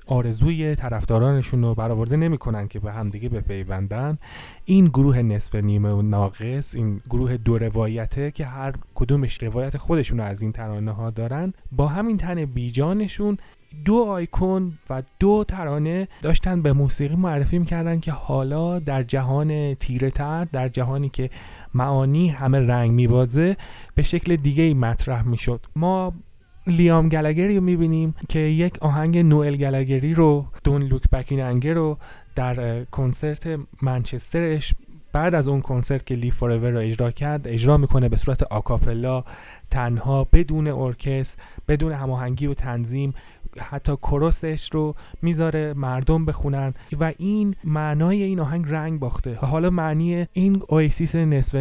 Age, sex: 30-49, male